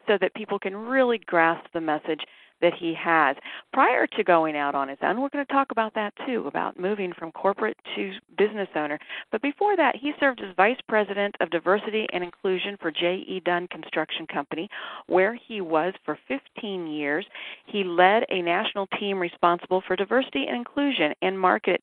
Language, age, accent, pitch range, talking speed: English, 50-69, American, 165-215 Hz, 185 wpm